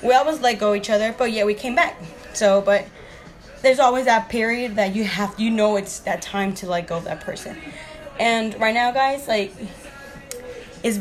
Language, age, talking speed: English, 20-39, 200 wpm